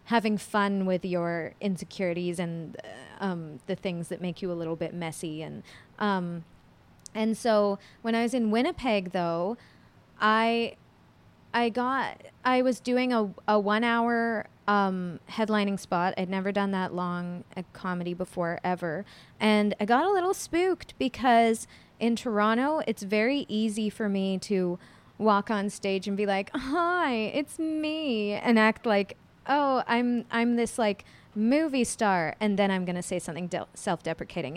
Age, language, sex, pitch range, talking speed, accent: 20-39, English, female, 180-230 Hz, 160 wpm, American